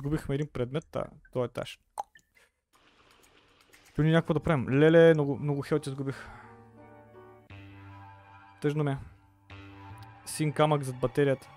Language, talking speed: Bulgarian, 115 wpm